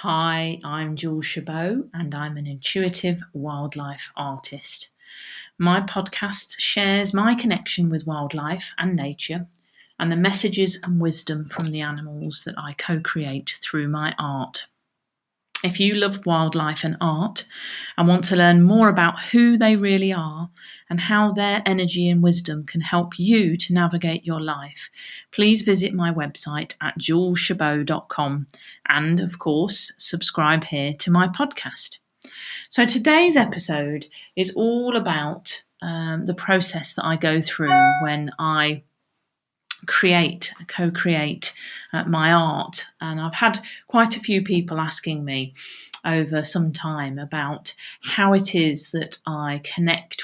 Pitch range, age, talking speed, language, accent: 150-185 Hz, 40-59, 140 wpm, English, British